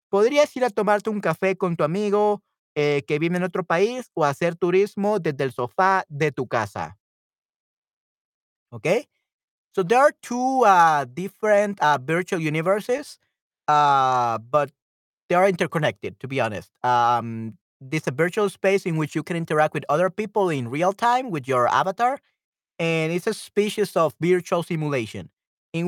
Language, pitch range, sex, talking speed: Spanish, 140-190 Hz, male, 160 wpm